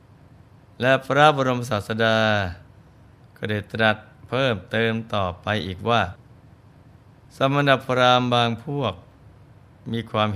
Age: 20-39